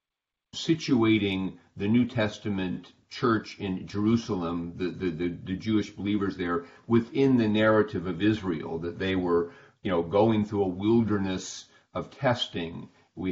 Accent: American